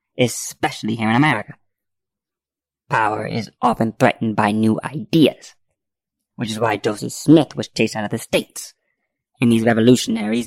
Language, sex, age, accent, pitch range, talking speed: English, female, 20-39, American, 115-150 Hz, 145 wpm